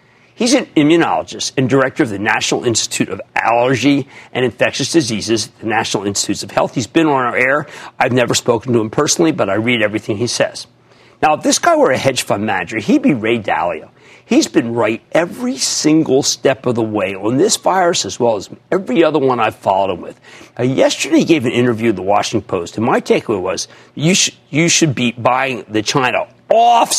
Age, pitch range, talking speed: 50-69, 115-190 Hz, 205 wpm